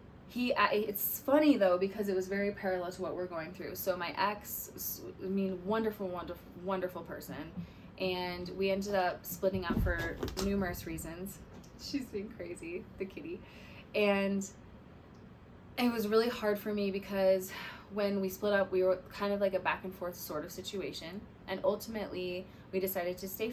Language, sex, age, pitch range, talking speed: English, female, 20-39, 175-200 Hz, 170 wpm